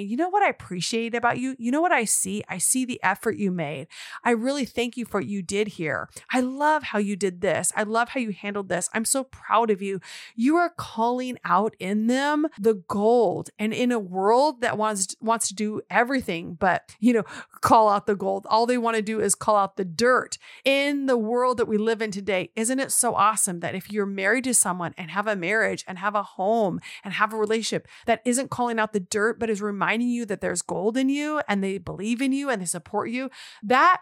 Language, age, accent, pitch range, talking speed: English, 30-49, American, 200-245 Hz, 235 wpm